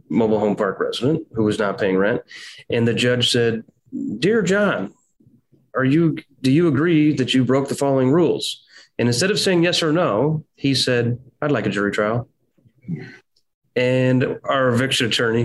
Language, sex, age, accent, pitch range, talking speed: English, male, 30-49, American, 110-140 Hz, 170 wpm